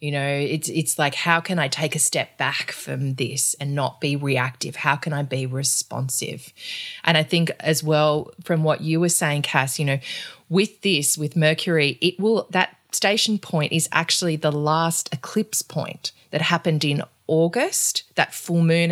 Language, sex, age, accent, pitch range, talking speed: English, female, 20-39, Australian, 145-165 Hz, 185 wpm